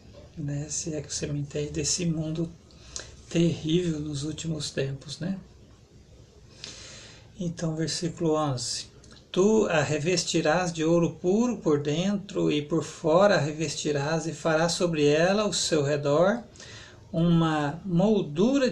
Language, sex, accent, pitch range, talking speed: Portuguese, male, Brazilian, 140-170 Hz, 120 wpm